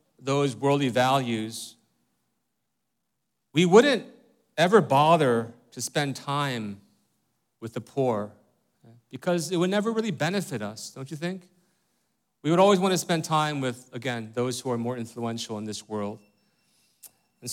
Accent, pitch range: American, 115-150 Hz